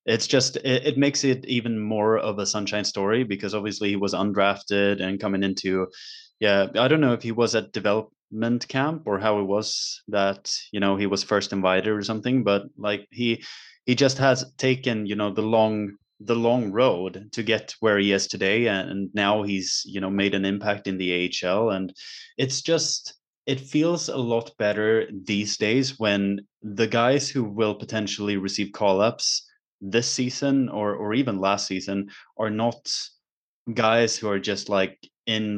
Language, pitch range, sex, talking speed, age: English, 100-115 Hz, male, 180 wpm, 20-39